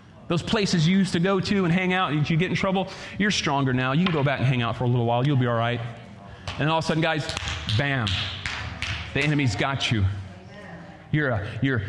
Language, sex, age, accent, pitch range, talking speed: English, male, 30-49, American, 115-180 Hz, 230 wpm